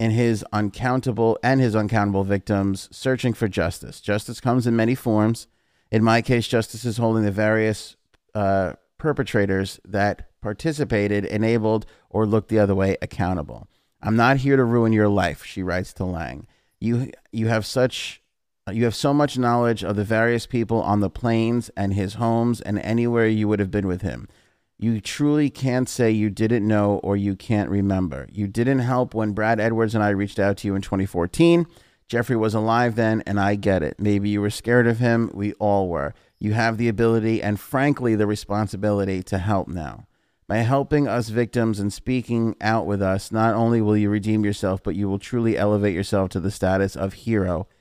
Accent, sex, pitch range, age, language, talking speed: American, male, 100-115 Hz, 30-49, English, 190 wpm